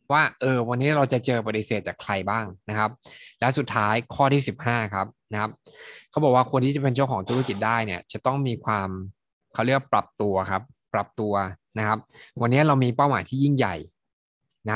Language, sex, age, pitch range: Thai, male, 20-39, 105-125 Hz